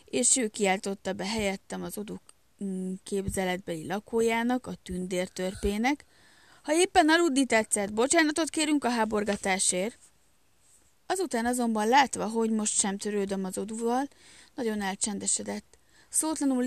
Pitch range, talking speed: 195-250 Hz, 115 wpm